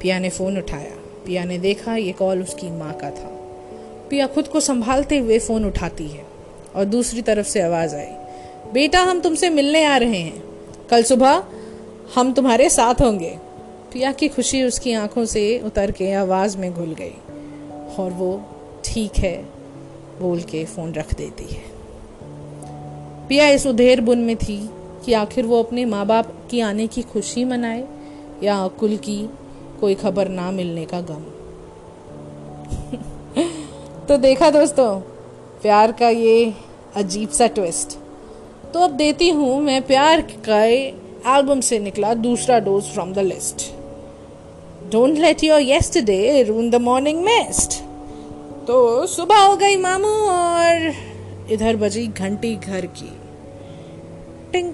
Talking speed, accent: 145 wpm, native